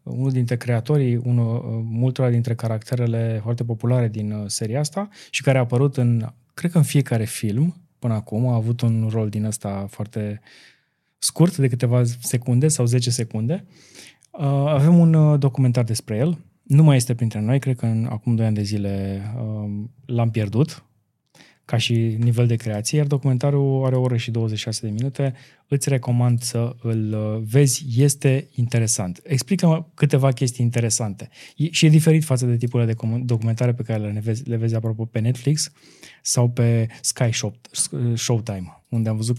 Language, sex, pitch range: Romanian, male, 115-135 Hz